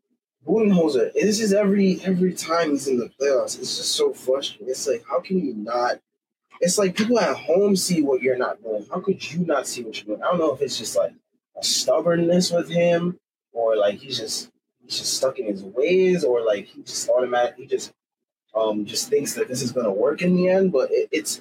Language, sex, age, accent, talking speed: English, male, 20-39, American, 220 wpm